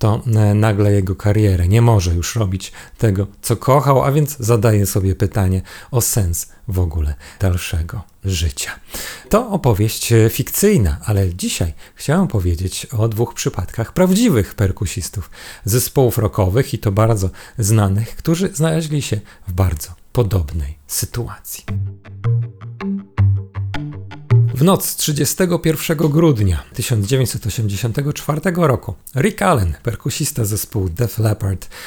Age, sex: 40-59, male